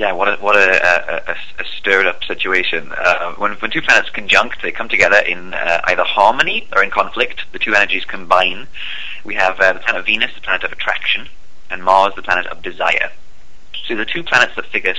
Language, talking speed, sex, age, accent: English, 210 wpm, male, 30-49, British